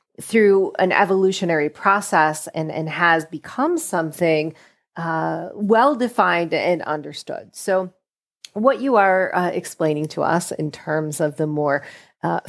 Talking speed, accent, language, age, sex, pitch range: 130 wpm, American, English, 40-59, female, 155-190 Hz